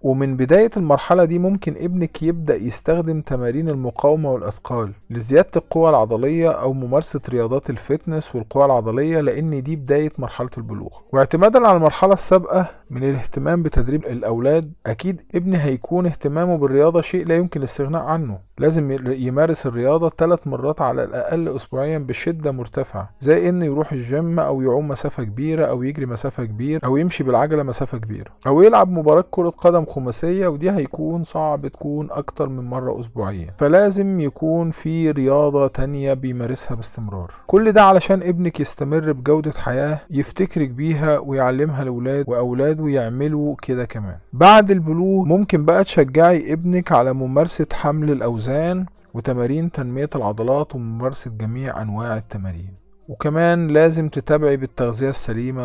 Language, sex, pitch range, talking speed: Arabic, male, 125-165 Hz, 135 wpm